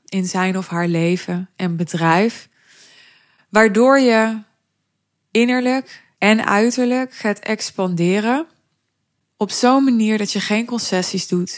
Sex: female